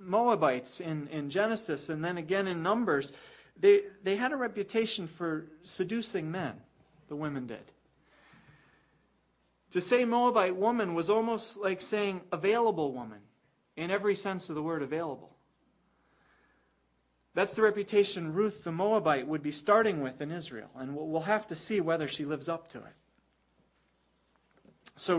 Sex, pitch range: male, 155-210 Hz